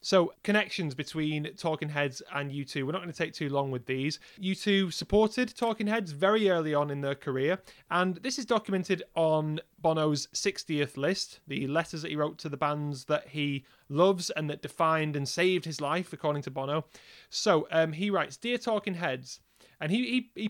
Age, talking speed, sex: 30-49, 195 wpm, male